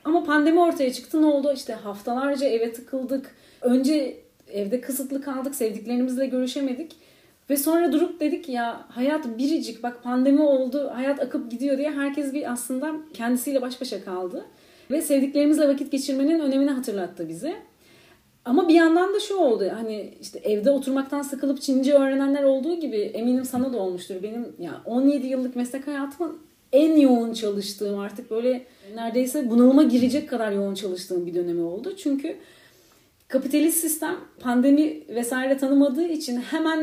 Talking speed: 150 wpm